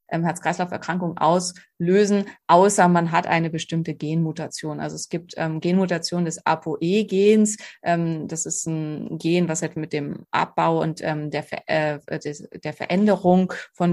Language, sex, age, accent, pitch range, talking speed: German, female, 30-49, German, 160-180 Hz, 140 wpm